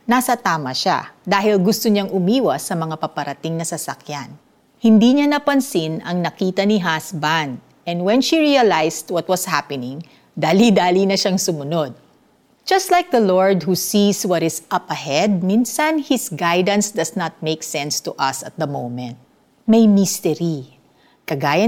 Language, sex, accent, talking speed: Filipino, female, native, 150 wpm